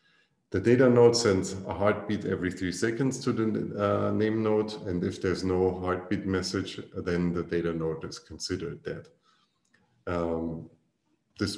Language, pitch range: English, 85-100 Hz